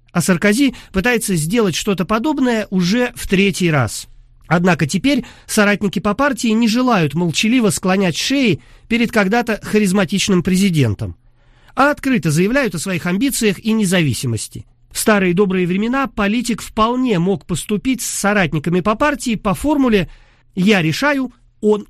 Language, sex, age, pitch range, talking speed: Russian, male, 50-69, 170-225 Hz, 135 wpm